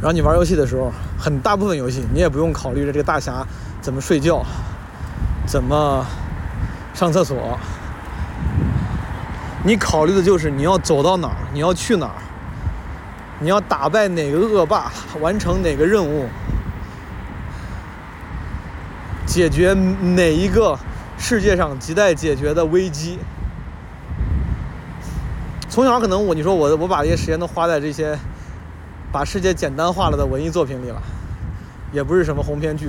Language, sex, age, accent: Chinese, male, 30-49, native